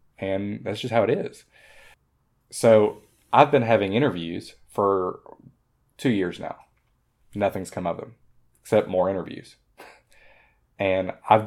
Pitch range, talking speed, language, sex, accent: 90-120 Hz, 125 wpm, English, male, American